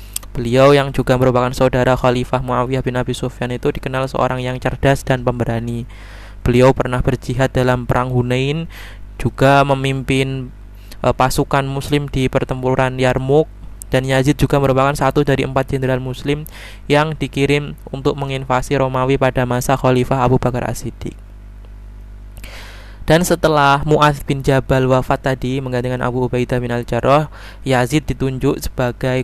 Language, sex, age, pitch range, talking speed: Indonesian, male, 20-39, 120-135 Hz, 135 wpm